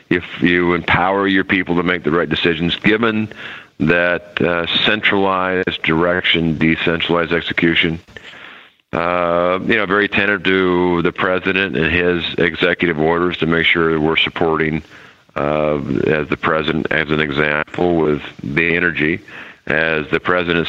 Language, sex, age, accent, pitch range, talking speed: English, male, 40-59, American, 80-90 Hz, 140 wpm